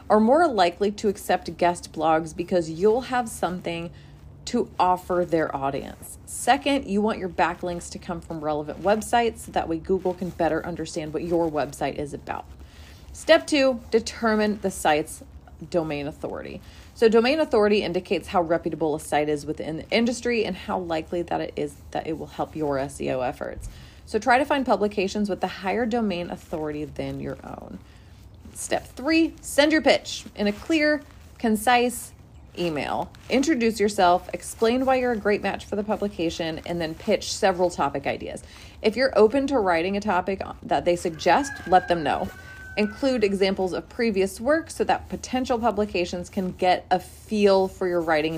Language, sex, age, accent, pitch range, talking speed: English, female, 30-49, American, 165-225 Hz, 170 wpm